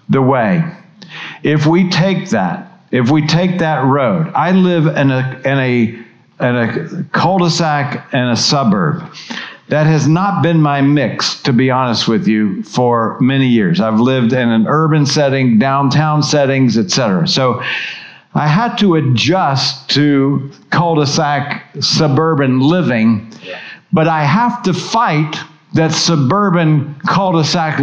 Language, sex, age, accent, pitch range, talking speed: English, male, 50-69, American, 140-180 Hz, 135 wpm